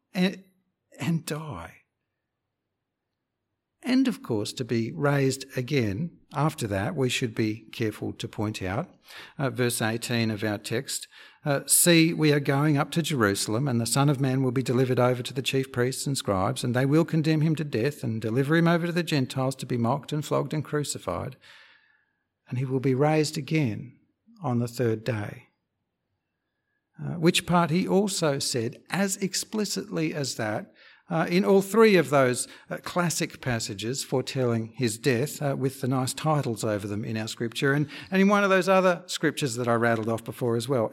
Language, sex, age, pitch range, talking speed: English, male, 60-79, 115-165 Hz, 185 wpm